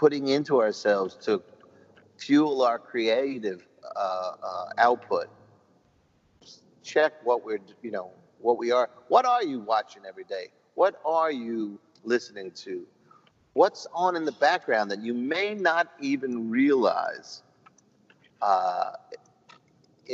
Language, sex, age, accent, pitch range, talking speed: English, male, 50-69, American, 120-160 Hz, 120 wpm